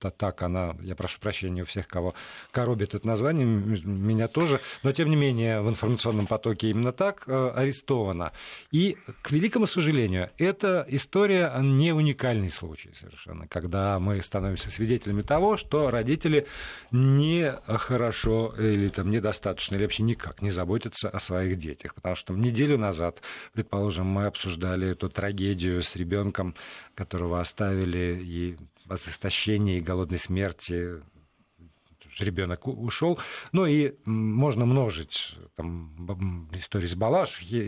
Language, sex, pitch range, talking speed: Russian, male, 95-135 Hz, 135 wpm